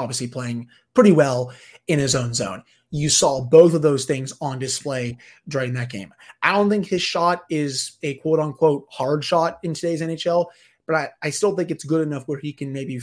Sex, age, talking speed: male, 30-49, 205 wpm